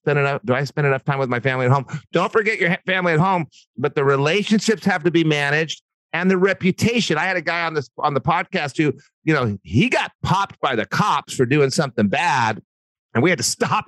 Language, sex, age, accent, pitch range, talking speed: English, male, 40-59, American, 140-180 Hz, 235 wpm